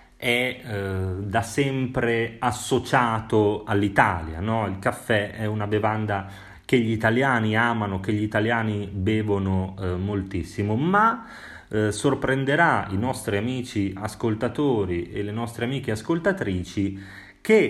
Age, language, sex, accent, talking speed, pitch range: 30-49, Italian, male, native, 115 wpm, 95-130 Hz